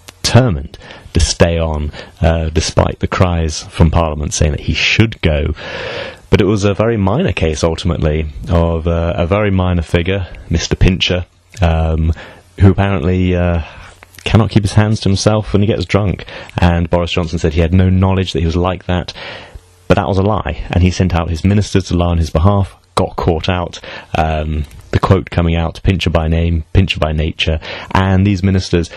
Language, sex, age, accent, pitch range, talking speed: English, male, 30-49, British, 80-95 Hz, 185 wpm